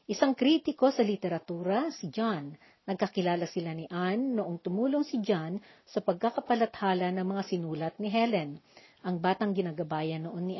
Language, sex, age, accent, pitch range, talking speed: Filipino, female, 50-69, native, 180-235 Hz, 145 wpm